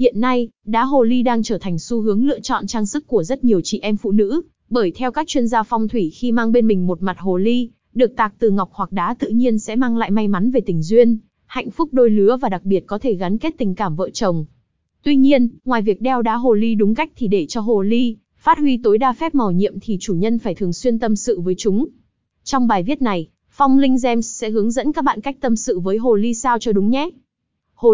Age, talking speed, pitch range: 20-39, 260 wpm, 200-250 Hz